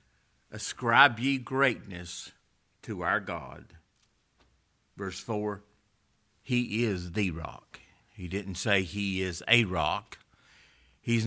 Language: English